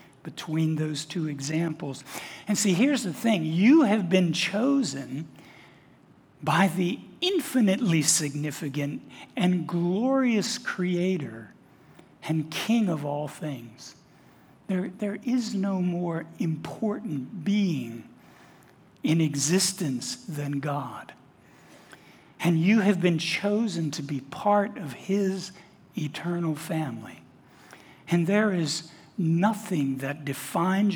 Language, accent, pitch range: English, American, 150-200 Hz